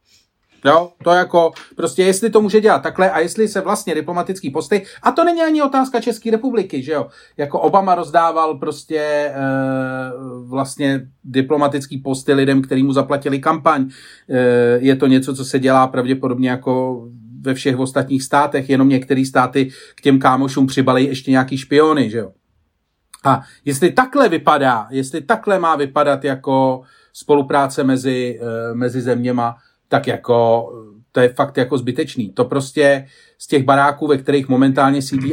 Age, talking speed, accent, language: 40-59, 155 wpm, native, Czech